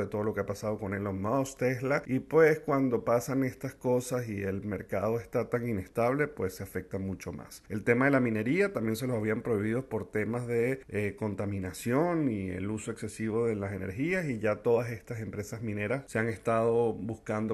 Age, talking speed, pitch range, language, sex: 40-59, 200 wpm, 105-135 Hz, Spanish, male